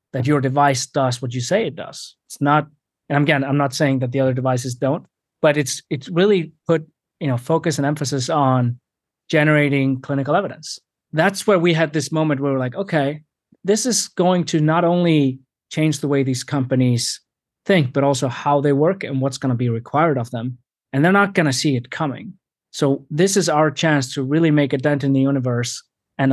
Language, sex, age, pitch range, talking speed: English, male, 30-49, 130-150 Hz, 210 wpm